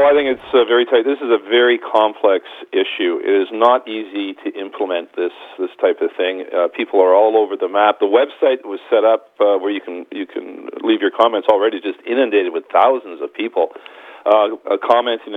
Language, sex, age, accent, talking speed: English, male, 50-69, American, 210 wpm